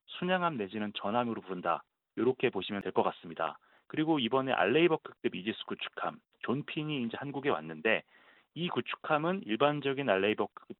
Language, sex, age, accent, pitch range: Korean, male, 30-49, native, 110-170 Hz